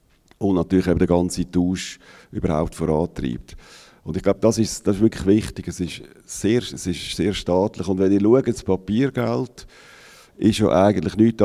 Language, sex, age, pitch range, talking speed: English, male, 50-69, 90-110 Hz, 175 wpm